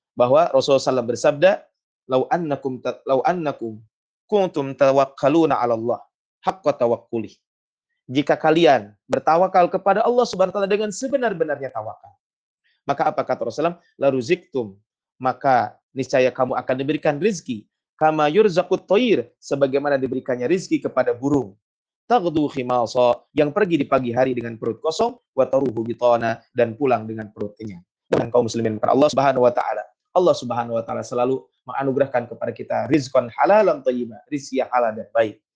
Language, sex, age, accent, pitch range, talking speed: Indonesian, male, 30-49, native, 120-160 Hz, 135 wpm